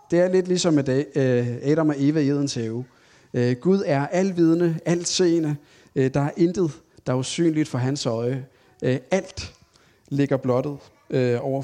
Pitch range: 125-165 Hz